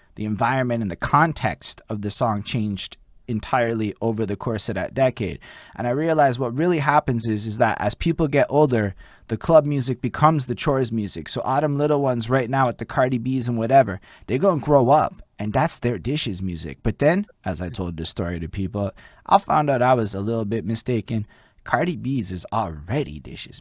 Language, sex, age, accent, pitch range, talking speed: English, male, 20-39, American, 105-130 Hz, 205 wpm